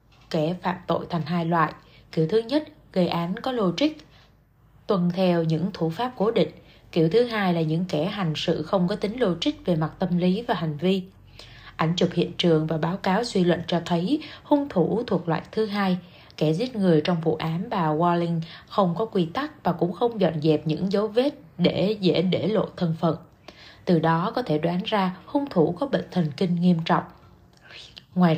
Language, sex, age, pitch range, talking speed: Vietnamese, female, 20-39, 160-195 Hz, 205 wpm